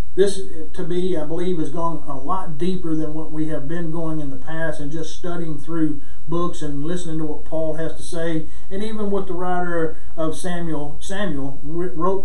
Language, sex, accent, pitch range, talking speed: English, male, American, 150-200 Hz, 200 wpm